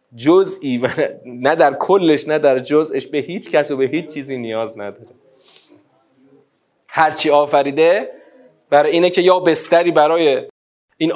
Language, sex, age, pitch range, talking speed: Persian, male, 30-49, 120-190 Hz, 140 wpm